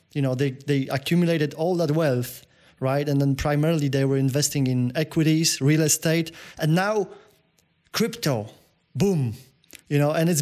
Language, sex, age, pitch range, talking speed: Polish, male, 30-49, 140-170 Hz, 155 wpm